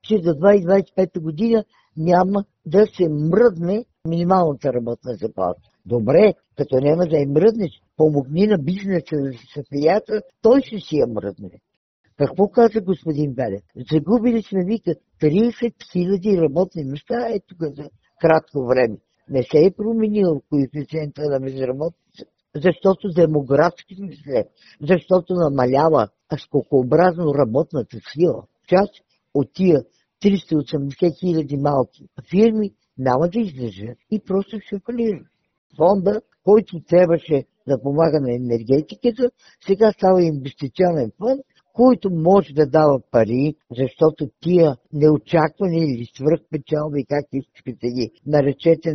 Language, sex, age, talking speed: Bulgarian, female, 50-69, 120 wpm